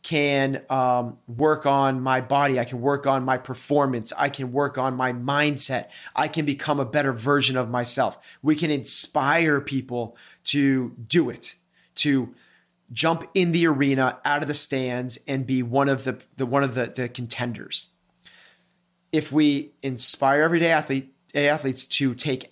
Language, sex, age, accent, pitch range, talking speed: English, male, 30-49, American, 130-155 Hz, 165 wpm